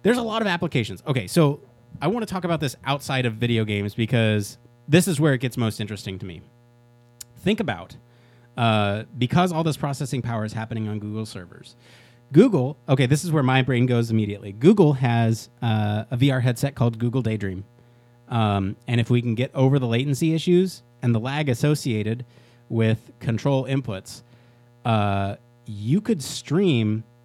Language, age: English, 30-49